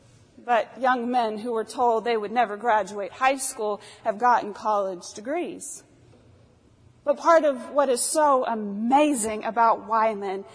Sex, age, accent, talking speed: female, 30-49, American, 140 wpm